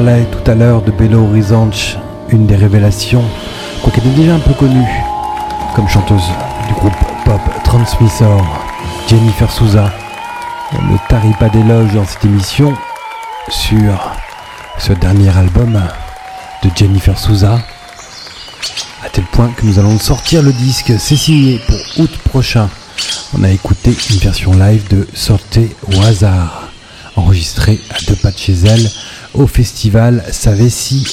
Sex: male